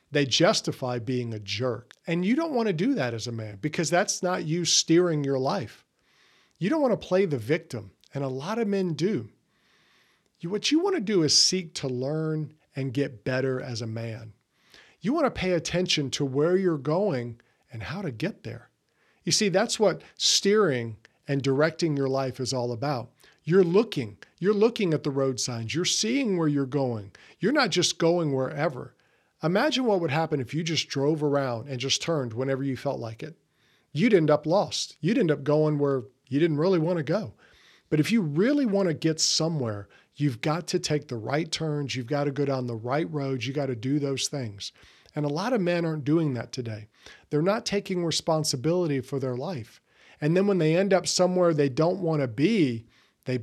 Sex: male